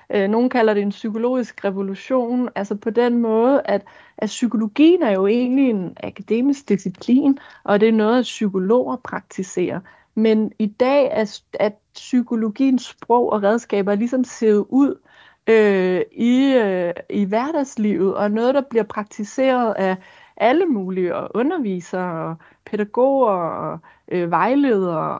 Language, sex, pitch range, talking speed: Danish, female, 205-255 Hz, 130 wpm